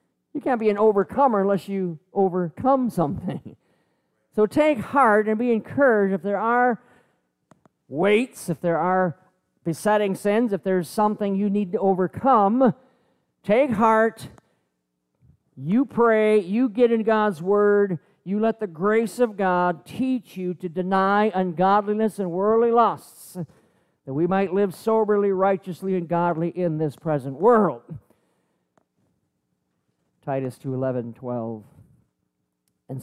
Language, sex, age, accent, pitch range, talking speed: English, male, 50-69, American, 135-205 Hz, 130 wpm